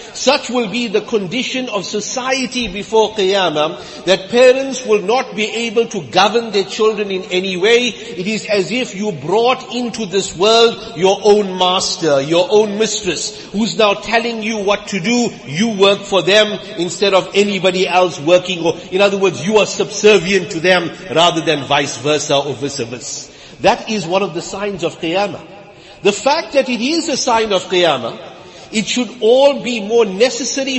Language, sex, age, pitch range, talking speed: English, male, 50-69, 190-240 Hz, 180 wpm